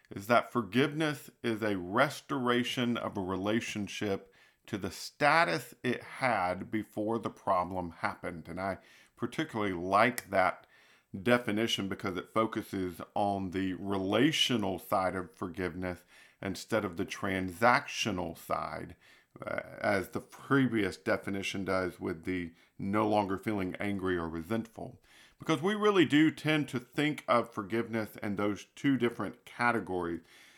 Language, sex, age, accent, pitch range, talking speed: English, male, 50-69, American, 95-120 Hz, 130 wpm